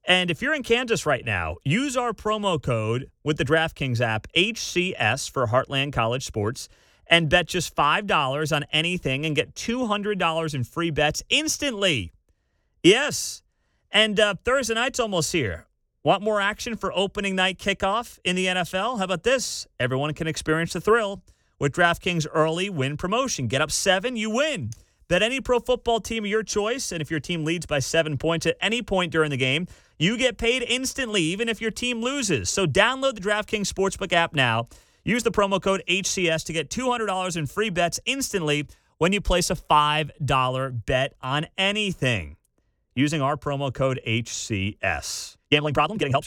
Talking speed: 175 wpm